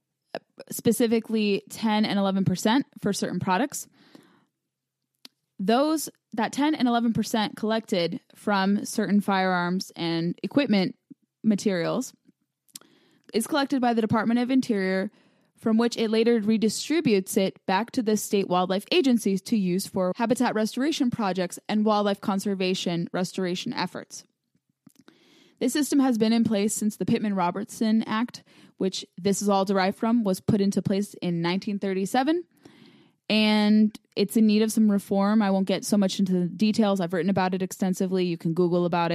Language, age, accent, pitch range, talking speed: English, 10-29, American, 190-235 Hz, 150 wpm